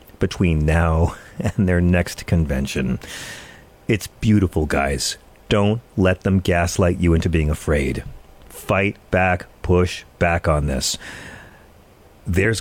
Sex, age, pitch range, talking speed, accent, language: male, 40-59, 85-120 Hz, 115 wpm, American, English